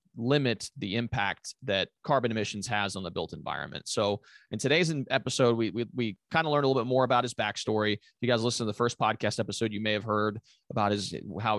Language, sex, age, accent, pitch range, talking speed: English, male, 30-49, American, 100-120 Hz, 230 wpm